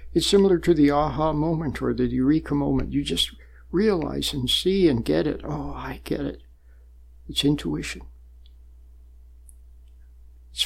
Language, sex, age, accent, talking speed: English, male, 60-79, American, 140 wpm